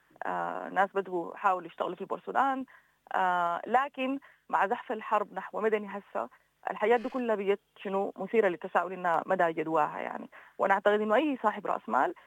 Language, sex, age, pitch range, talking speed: English, female, 30-49, 175-215 Hz, 145 wpm